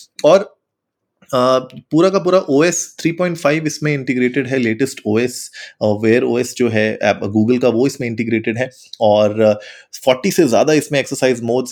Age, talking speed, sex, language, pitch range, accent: 30-49, 145 wpm, male, Hindi, 115-145 Hz, native